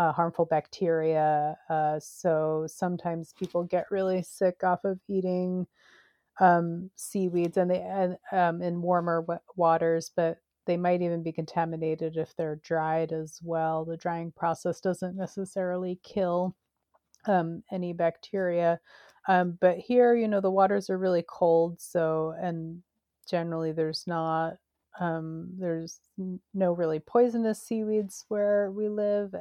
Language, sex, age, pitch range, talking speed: English, female, 30-49, 165-190 Hz, 130 wpm